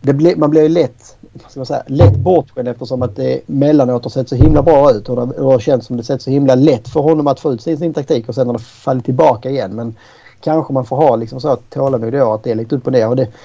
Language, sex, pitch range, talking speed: Swedish, male, 120-140 Hz, 265 wpm